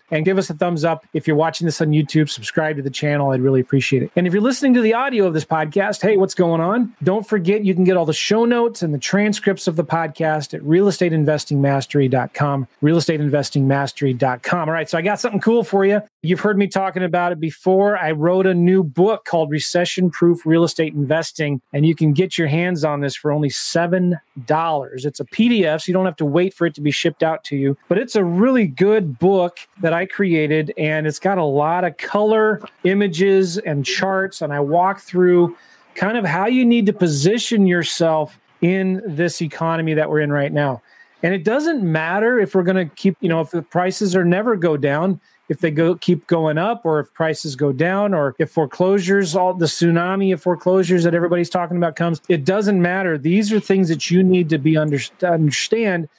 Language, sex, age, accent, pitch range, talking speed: English, male, 30-49, American, 155-190 Hz, 215 wpm